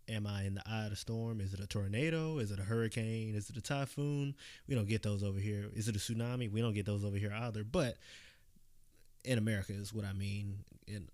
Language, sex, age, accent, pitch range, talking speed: English, male, 20-39, American, 105-120 Hz, 240 wpm